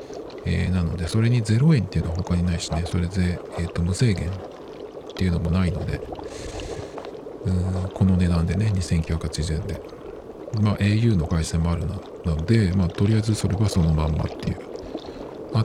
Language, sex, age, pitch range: Japanese, male, 50-69, 85-110 Hz